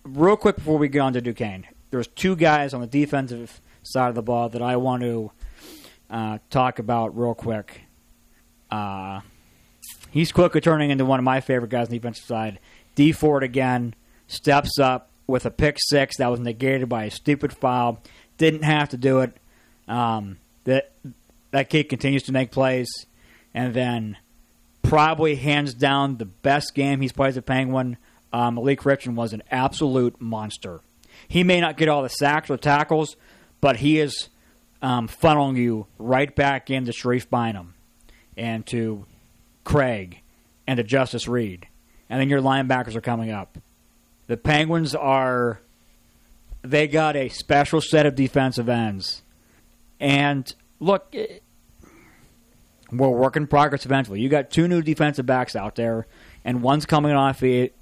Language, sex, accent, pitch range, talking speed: English, male, American, 115-145 Hz, 160 wpm